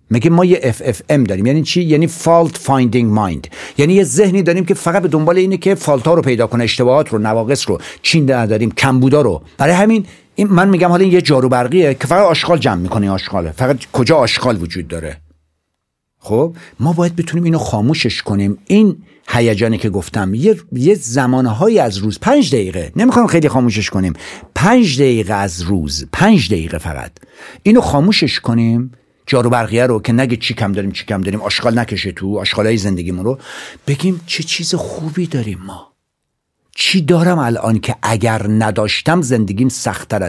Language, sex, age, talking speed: Persian, male, 60-79, 175 wpm